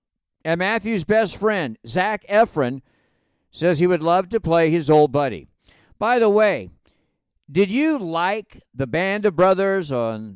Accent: American